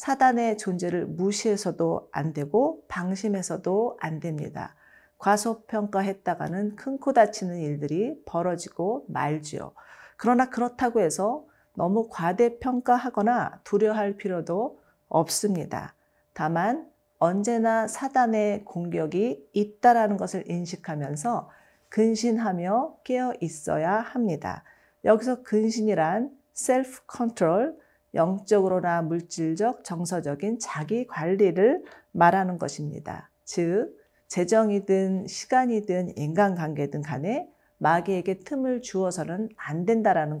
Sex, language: female, Korean